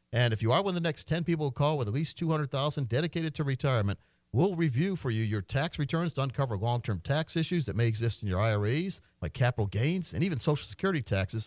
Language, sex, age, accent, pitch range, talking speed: English, male, 50-69, American, 110-155 Hz, 235 wpm